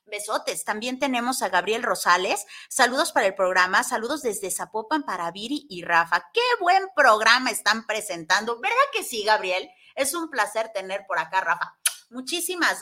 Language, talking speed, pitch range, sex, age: Spanish, 160 wpm, 195-280 Hz, female, 30-49